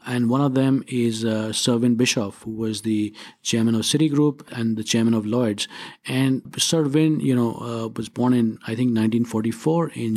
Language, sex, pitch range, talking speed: English, male, 115-130 Hz, 185 wpm